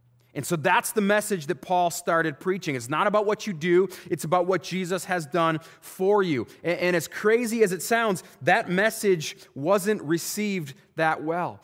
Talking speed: 180 wpm